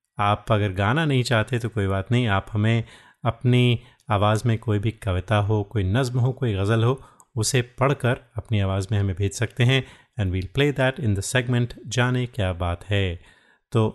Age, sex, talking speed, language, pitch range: 30-49, male, 195 wpm, Hindi, 105-130 Hz